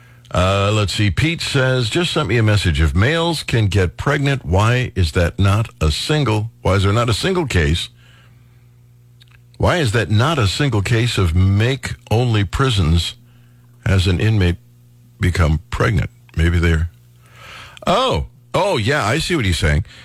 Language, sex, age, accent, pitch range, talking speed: English, male, 60-79, American, 105-125 Hz, 160 wpm